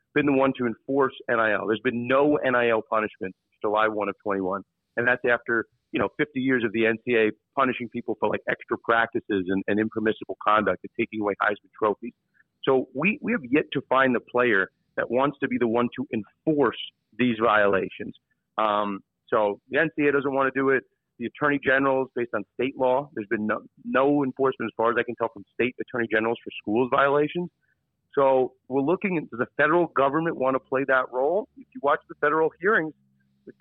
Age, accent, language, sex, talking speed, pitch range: 40-59, American, English, male, 205 wpm, 115-140 Hz